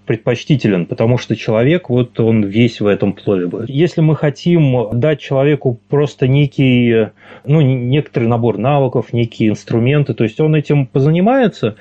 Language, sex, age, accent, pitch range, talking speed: Russian, male, 30-49, native, 115-145 Hz, 145 wpm